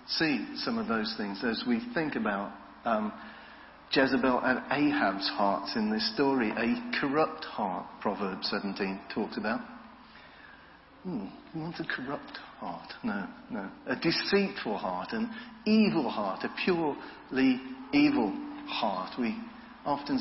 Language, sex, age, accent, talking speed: English, male, 50-69, British, 120 wpm